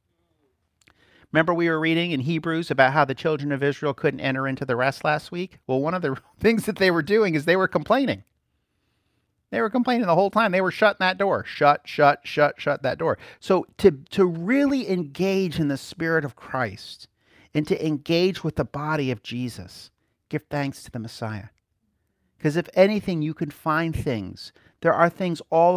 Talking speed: 195 wpm